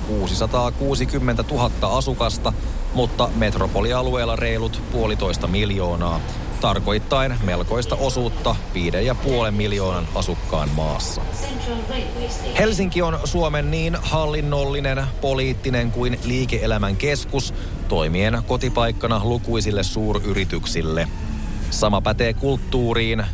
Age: 30-49